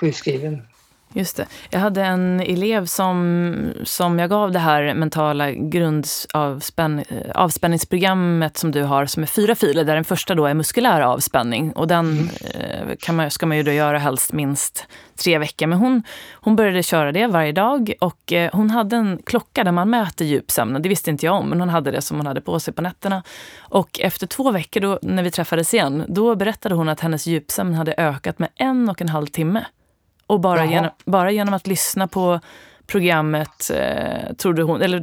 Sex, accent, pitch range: female, native, 155-195 Hz